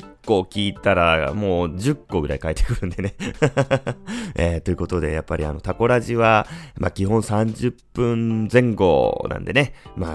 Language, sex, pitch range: Japanese, male, 80-120 Hz